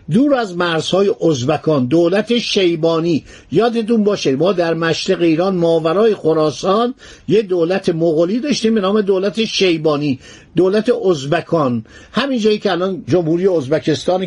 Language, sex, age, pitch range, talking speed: Persian, male, 50-69, 165-220 Hz, 125 wpm